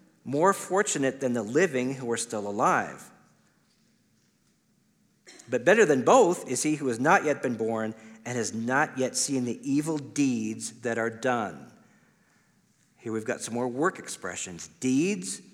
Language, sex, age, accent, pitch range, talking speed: English, male, 50-69, American, 110-150 Hz, 155 wpm